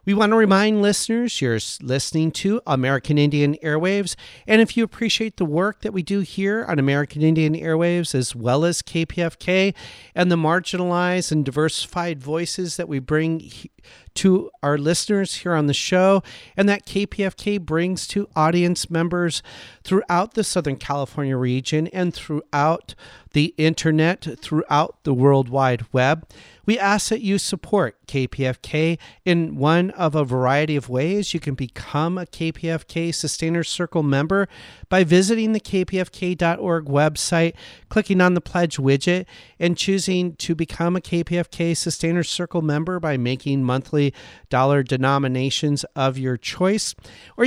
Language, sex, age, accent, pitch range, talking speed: English, male, 40-59, American, 145-185 Hz, 145 wpm